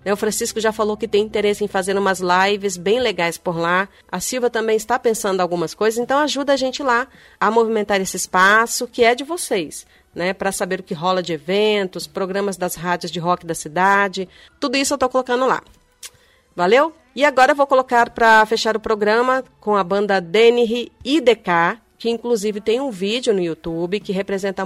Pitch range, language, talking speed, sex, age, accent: 185-230 Hz, English, 195 wpm, female, 40-59, Brazilian